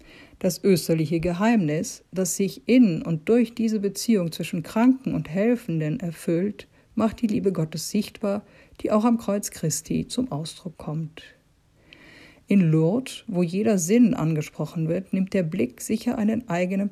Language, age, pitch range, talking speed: German, 50-69, 165-220 Hz, 145 wpm